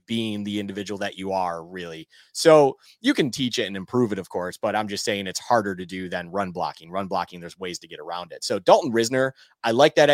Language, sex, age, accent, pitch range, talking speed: English, male, 30-49, American, 105-130 Hz, 250 wpm